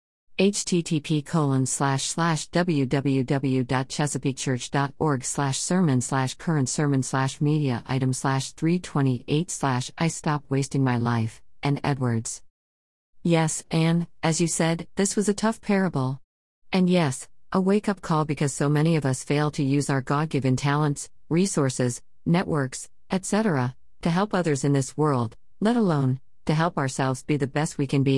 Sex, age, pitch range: female, 50-69, 135-165 Hz